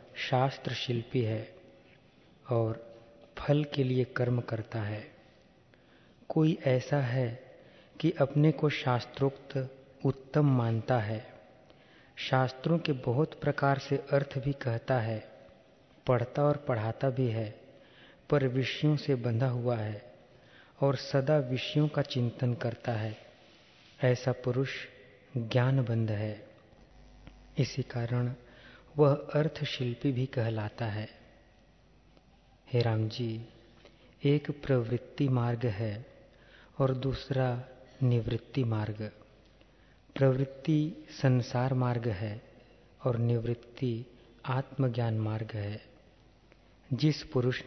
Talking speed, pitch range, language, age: 100 wpm, 115-135 Hz, Hindi, 40-59